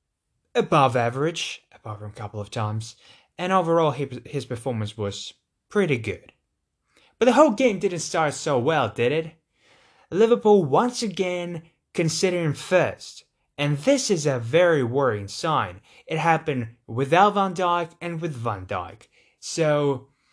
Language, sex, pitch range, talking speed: English, male, 115-165 Hz, 140 wpm